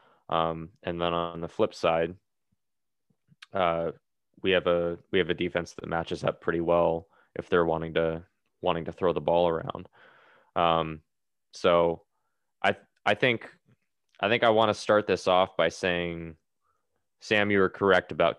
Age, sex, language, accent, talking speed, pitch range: 20-39, male, English, American, 165 wpm, 85-100 Hz